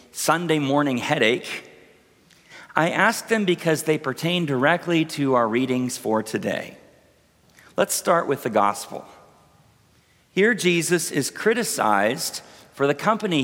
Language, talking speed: English, 120 wpm